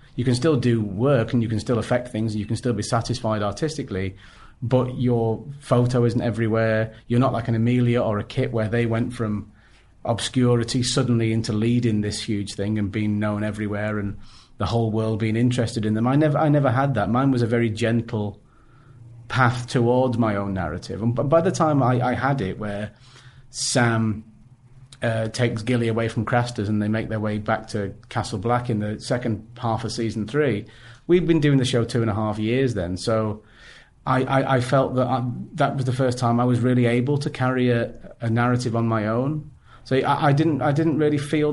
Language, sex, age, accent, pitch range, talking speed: English, male, 30-49, British, 110-130 Hz, 210 wpm